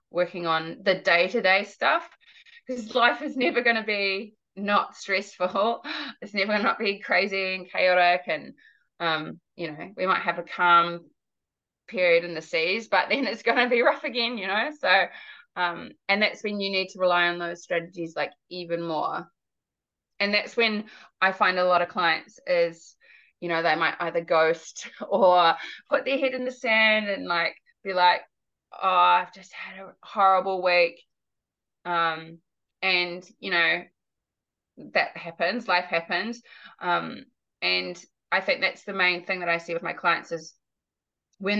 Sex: female